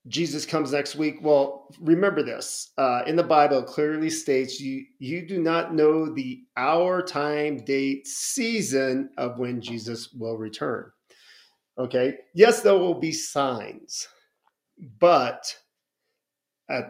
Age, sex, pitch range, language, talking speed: 40-59, male, 130-160 Hz, English, 130 wpm